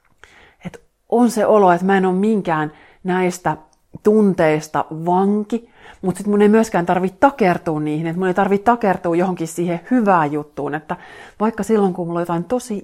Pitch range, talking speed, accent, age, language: 165-200 Hz, 170 wpm, native, 30-49, Finnish